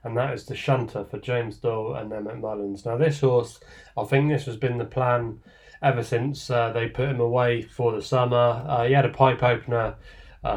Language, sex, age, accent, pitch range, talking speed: English, male, 20-39, British, 115-140 Hz, 215 wpm